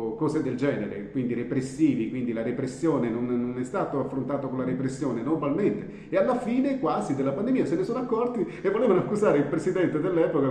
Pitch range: 130-160 Hz